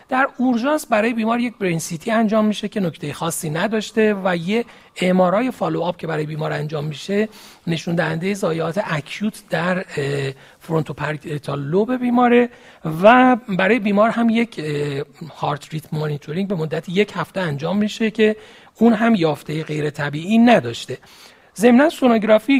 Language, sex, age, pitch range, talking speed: Persian, male, 40-59, 150-205 Hz, 145 wpm